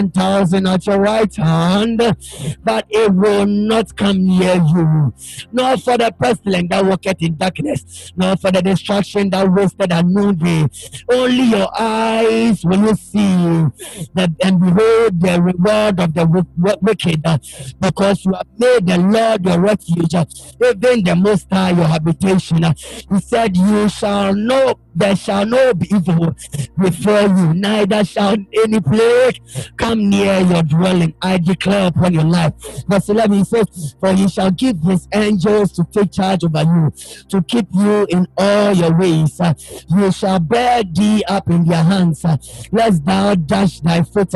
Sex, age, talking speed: male, 50-69, 160 wpm